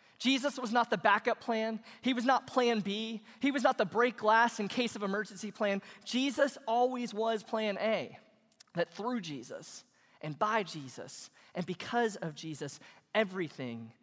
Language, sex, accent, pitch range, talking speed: English, male, American, 155-215 Hz, 165 wpm